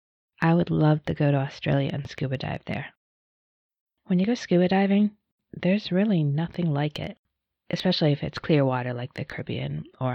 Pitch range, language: 150-195 Hz, English